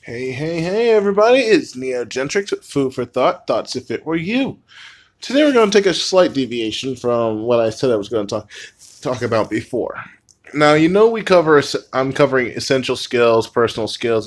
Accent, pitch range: American, 105-150 Hz